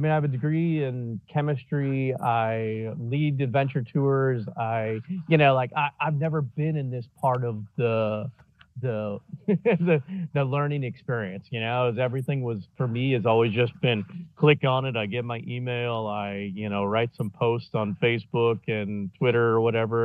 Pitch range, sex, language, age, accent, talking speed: 115-150 Hz, male, English, 40-59, American, 175 wpm